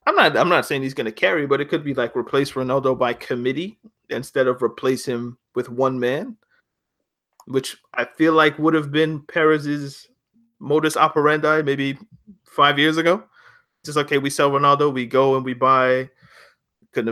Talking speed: 180 wpm